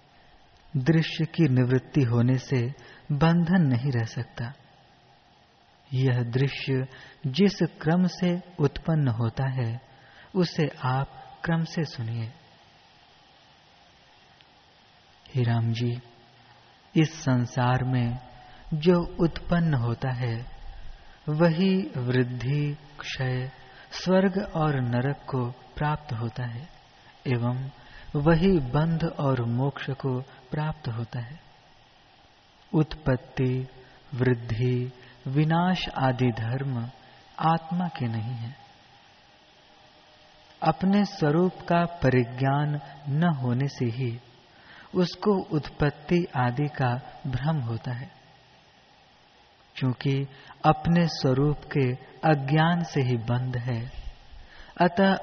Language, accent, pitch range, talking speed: Hindi, native, 125-160 Hz, 90 wpm